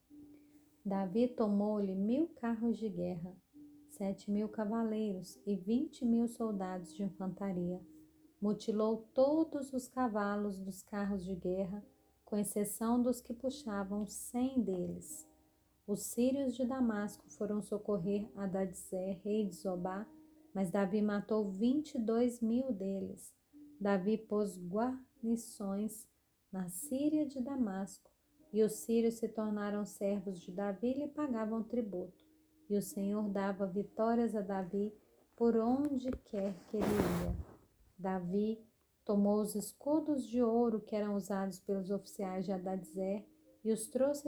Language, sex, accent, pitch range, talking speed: Portuguese, female, Brazilian, 195-245 Hz, 130 wpm